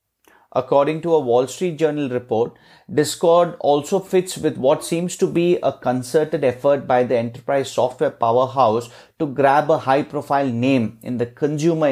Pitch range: 125-155 Hz